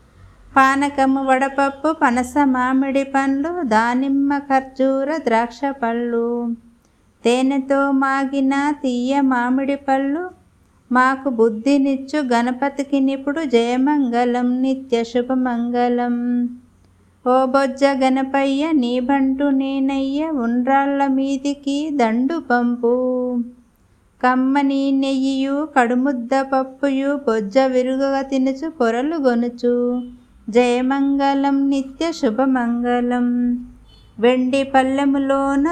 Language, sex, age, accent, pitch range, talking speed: Telugu, female, 50-69, native, 245-275 Hz, 70 wpm